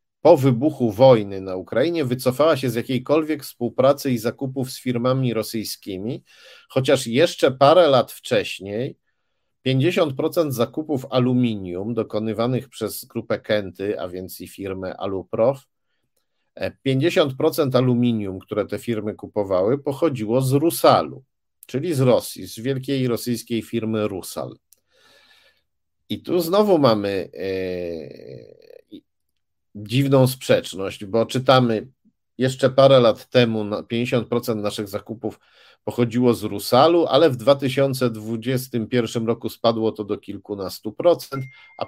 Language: Polish